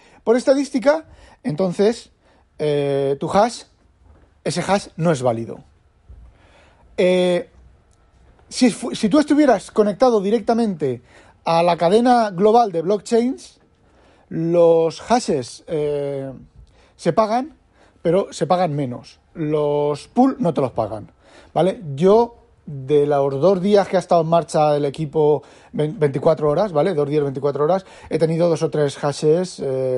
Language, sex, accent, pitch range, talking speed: Spanish, male, Spanish, 130-195 Hz, 130 wpm